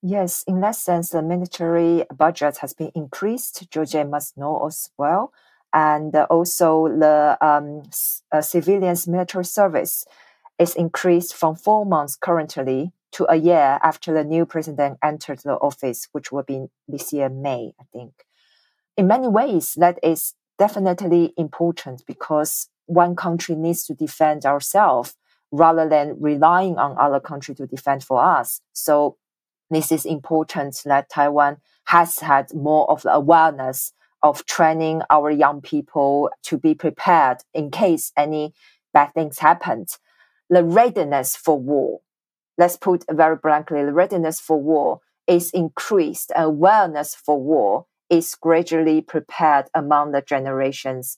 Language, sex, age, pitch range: English, female, 40-59, 145-175 Hz